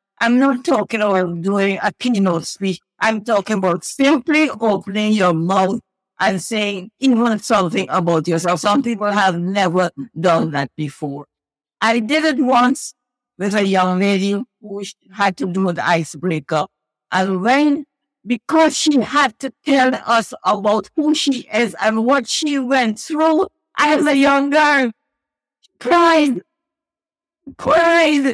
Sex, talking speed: female, 140 wpm